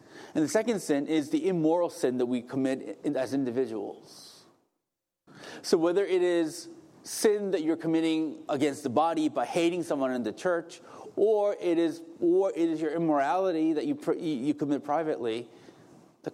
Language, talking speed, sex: English, 160 wpm, male